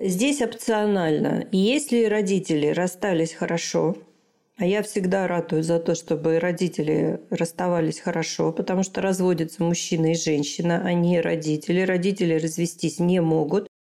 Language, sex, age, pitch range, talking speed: Russian, female, 40-59, 165-200 Hz, 125 wpm